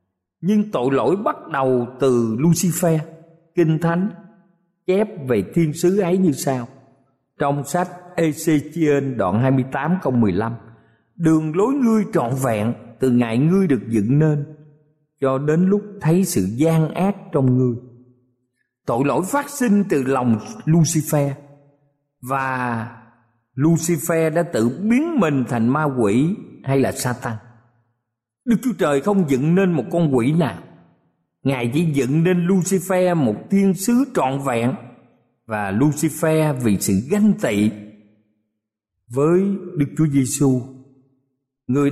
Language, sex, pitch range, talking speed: Vietnamese, male, 120-170 Hz, 130 wpm